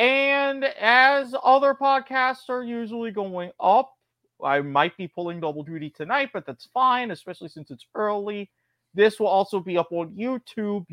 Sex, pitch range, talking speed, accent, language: male, 155-215 Hz, 160 wpm, American, English